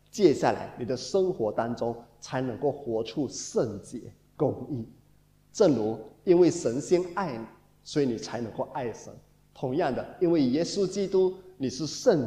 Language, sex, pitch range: Chinese, male, 130-215 Hz